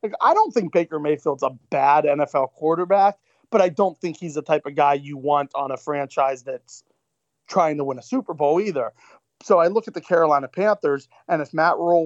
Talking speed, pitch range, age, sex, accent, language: 210 wpm, 135-170 Hz, 30-49, male, American, English